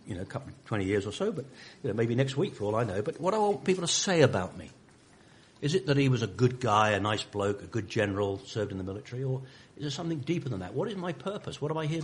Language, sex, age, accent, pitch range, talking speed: English, male, 50-69, British, 110-150 Hz, 300 wpm